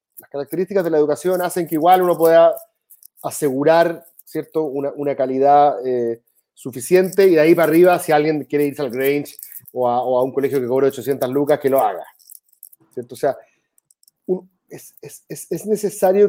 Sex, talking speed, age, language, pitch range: male, 185 wpm, 30-49, Spanish, 135-170 Hz